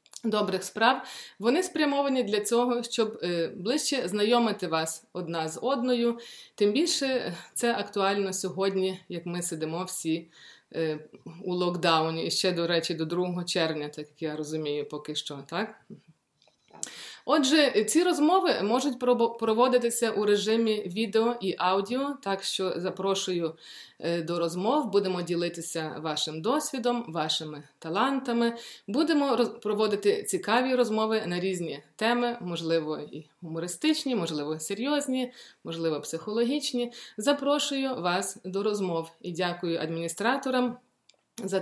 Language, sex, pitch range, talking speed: Ukrainian, female, 175-240 Hz, 120 wpm